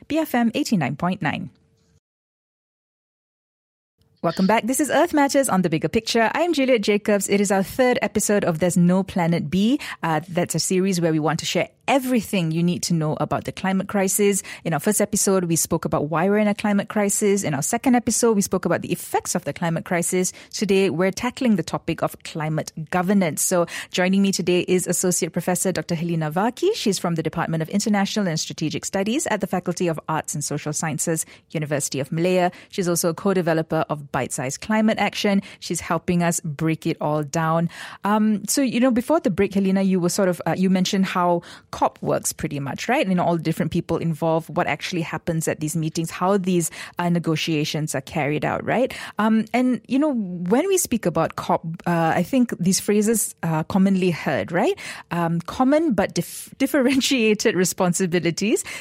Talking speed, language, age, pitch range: 195 wpm, English, 20-39, 165-210 Hz